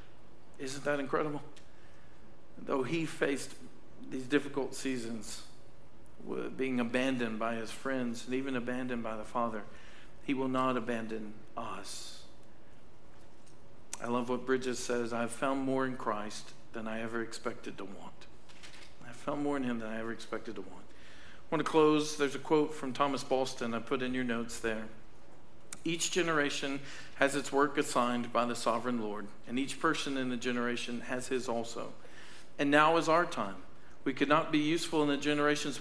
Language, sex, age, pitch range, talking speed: English, male, 50-69, 115-145 Hz, 170 wpm